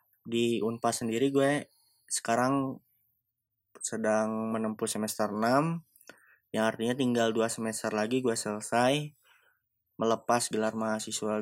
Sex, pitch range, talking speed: male, 110-125 Hz, 105 wpm